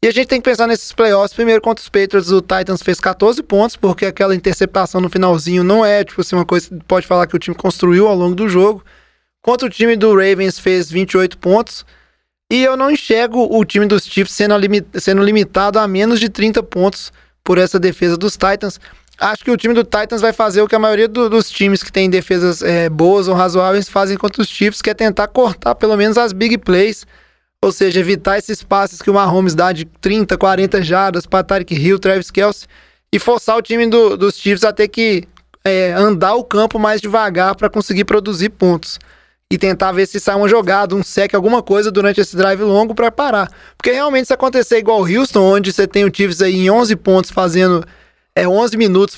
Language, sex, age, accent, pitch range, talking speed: Portuguese, male, 20-39, Brazilian, 185-220 Hz, 215 wpm